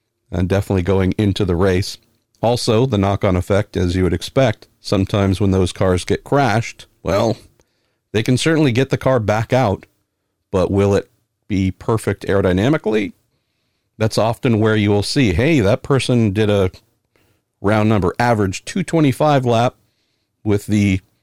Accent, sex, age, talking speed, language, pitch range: American, male, 50-69, 155 wpm, English, 95-120 Hz